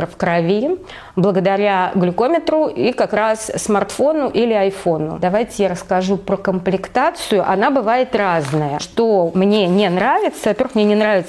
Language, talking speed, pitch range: Russian, 140 wpm, 185-230 Hz